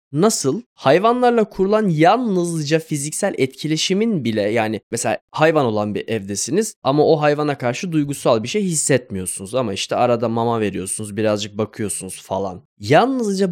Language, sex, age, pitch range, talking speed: Turkish, male, 10-29, 115-175 Hz, 135 wpm